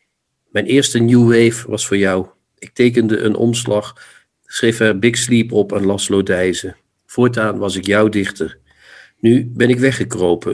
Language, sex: Dutch, male